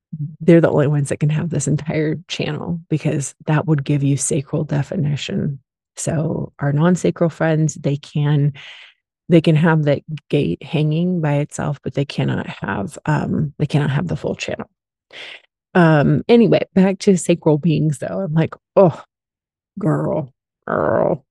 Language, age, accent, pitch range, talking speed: English, 30-49, American, 145-170 Hz, 150 wpm